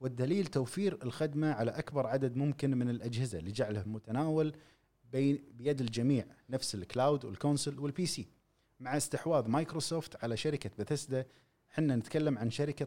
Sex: male